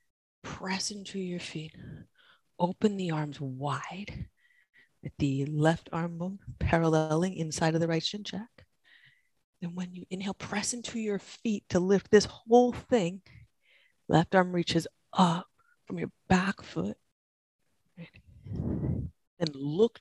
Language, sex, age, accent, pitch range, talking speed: English, female, 30-49, American, 150-200 Hz, 125 wpm